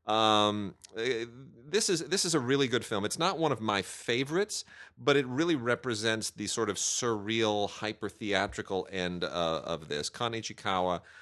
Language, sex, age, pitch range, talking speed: English, male, 40-59, 90-110 Hz, 160 wpm